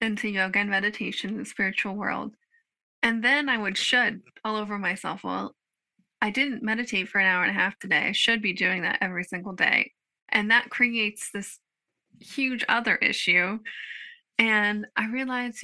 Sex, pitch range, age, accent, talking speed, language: female, 205-245 Hz, 20-39, American, 175 wpm, English